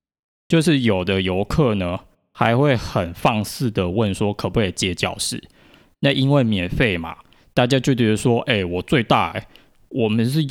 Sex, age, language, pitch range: male, 20-39, Chinese, 95-125 Hz